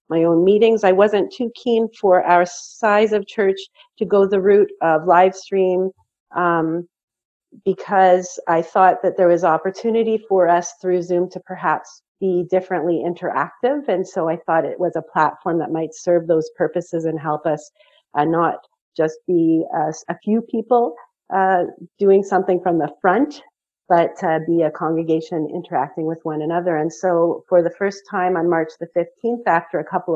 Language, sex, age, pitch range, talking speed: English, female, 40-59, 165-195 Hz, 175 wpm